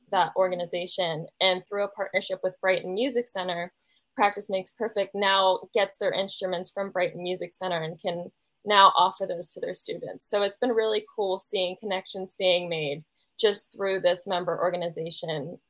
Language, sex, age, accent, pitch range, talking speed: English, female, 10-29, American, 180-210 Hz, 165 wpm